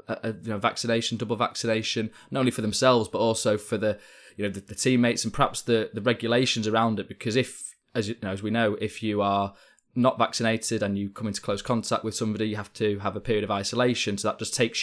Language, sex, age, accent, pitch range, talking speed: English, male, 20-39, British, 100-115 Hz, 240 wpm